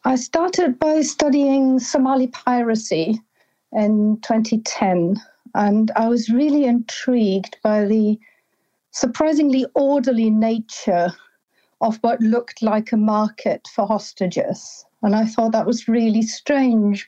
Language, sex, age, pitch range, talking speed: English, female, 60-79, 200-235 Hz, 115 wpm